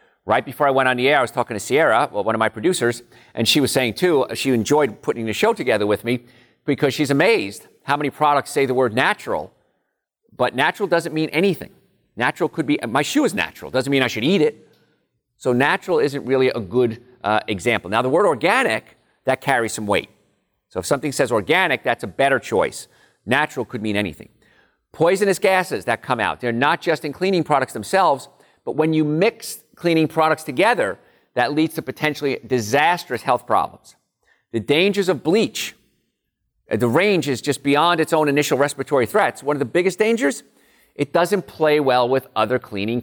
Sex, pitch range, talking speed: male, 115-155 Hz, 190 wpm